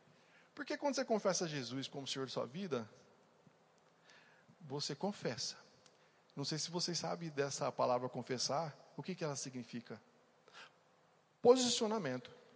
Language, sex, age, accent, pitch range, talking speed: Portuguese, male, 40-59, Brazilian, 145-190 Hz, 125 wpm